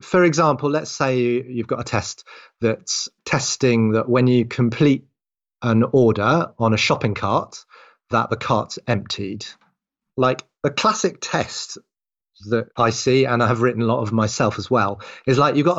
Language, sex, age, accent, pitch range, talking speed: English, male, 30-49, British, 115-145 Hz, 170 wpm